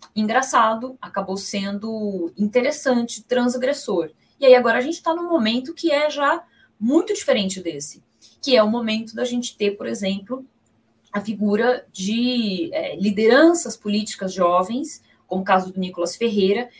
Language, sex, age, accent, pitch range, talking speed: Portuguese, female, 20-39, Brazilian, 195-255 Hz, 150 wpm